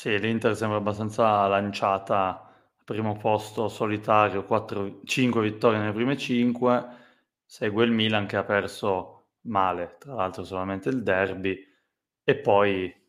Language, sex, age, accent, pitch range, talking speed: Italian, male, 20-39, native, 95-115 Hz, 135 wpm